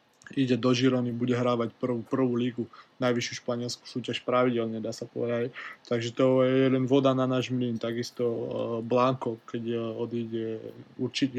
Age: 20-39